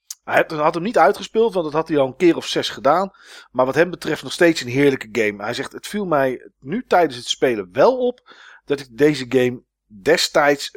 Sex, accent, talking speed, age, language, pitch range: male, Dutch, 225 wpm, 40-59, Dutch, 120-165 Hz